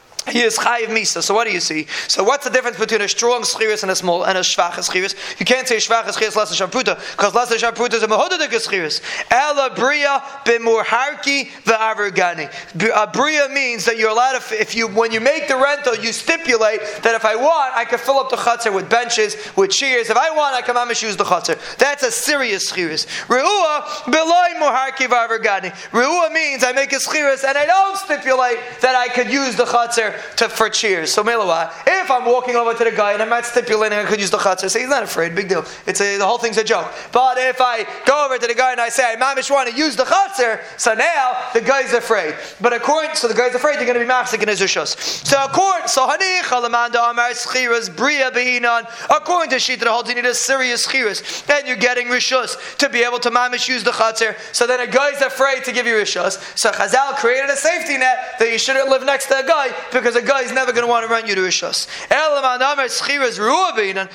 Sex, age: male, 30-49